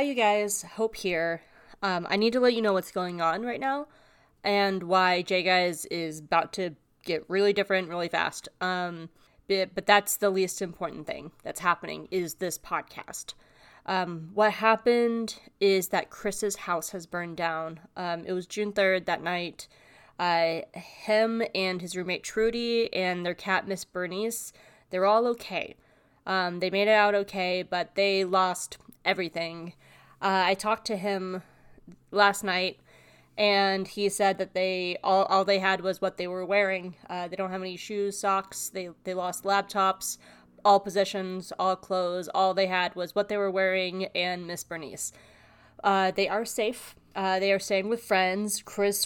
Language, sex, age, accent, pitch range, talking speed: English, female, 20-39, American, 180-205 Hz, 170 wpm